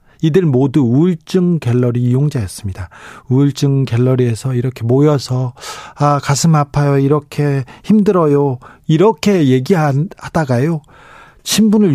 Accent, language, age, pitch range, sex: native, Korean, 40-59, 130-175 Hz, male